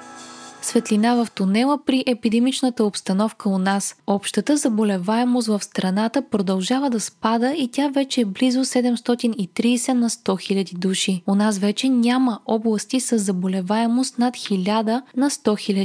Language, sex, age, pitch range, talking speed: Bulgarian, female, 20-39, 200-245 Hz, 140 wpm